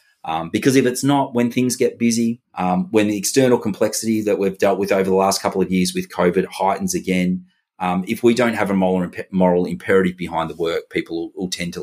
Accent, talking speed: Australian, 230 wpm